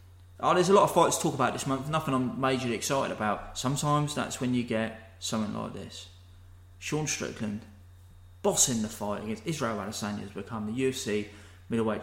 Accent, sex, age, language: British, male, 20-39, English